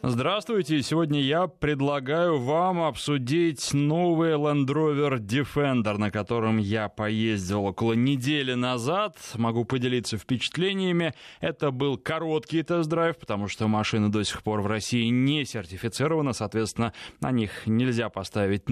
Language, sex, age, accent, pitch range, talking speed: Russian, male, 20-39, native, 115-150 Hz, 125 wpm